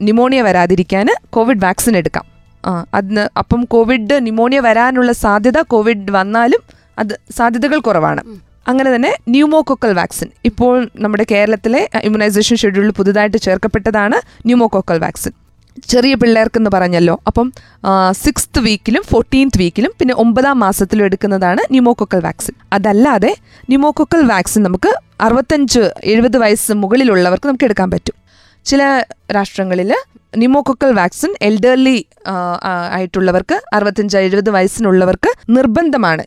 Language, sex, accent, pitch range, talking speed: Malayalam, female, native, 200-250 Hz, 110 wpm